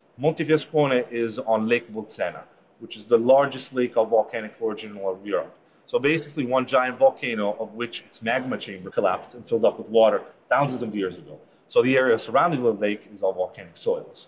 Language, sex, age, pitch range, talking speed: English, male, 30-49, 115-155 Hz, 200 wpm